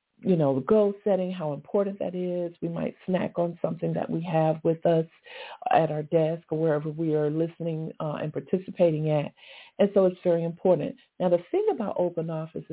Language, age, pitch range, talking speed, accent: English, 50-69, 160-195 Hz, 200 wpm, American